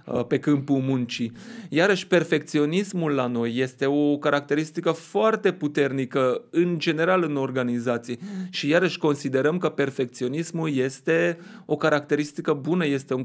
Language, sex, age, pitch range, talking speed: Romanian, male, 30-49, 140-180 Hz, 120 wpm